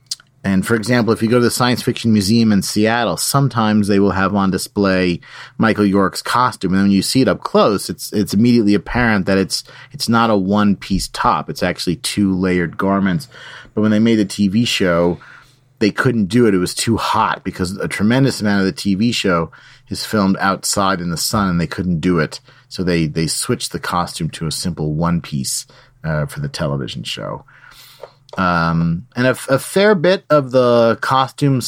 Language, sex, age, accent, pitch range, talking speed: English, male, 30-49, American, 90-115 Hz, 195 wpm